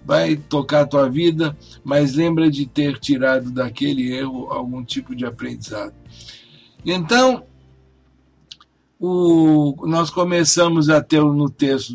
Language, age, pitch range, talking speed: Portuguese, 60-79, 130-155 Hz, 115 wpm